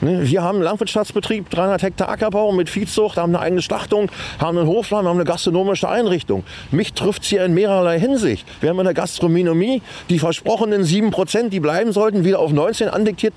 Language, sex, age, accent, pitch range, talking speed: German, male, 40-59, German, 165-210 Hz, 185 wpm